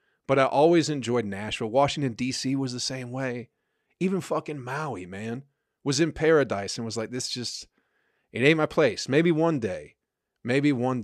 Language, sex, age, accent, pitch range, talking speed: English, male, 40-59, American, 110-130 Hz, 175 wpm